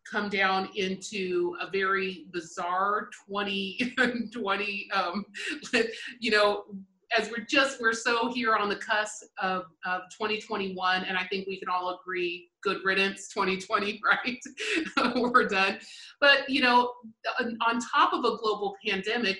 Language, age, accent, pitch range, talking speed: English, 30-49, American, 190-220 Hz, 135 wpm